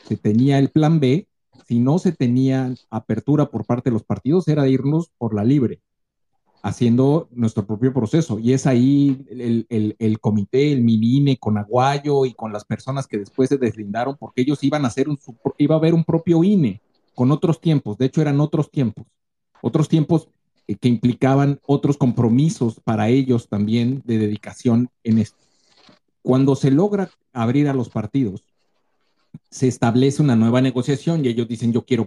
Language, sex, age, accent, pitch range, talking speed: Spanish, male, 50-69, Mexican, 115-150 Hz, 180 wpm